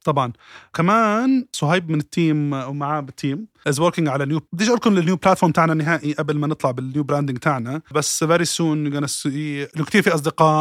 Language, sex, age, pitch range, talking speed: Arabic, male, 20-39, 145-165 Hz, 170 wpm